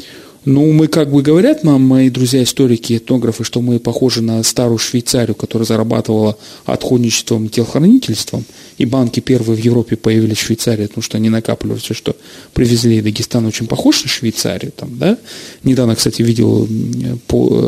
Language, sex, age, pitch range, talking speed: Russian, male, 30-49, 115-150 Hz, 155 wpm